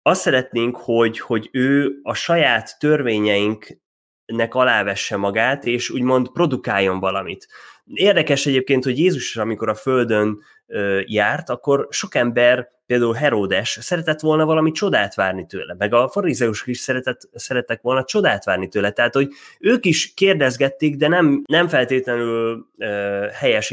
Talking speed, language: 135 wpm, Hungarian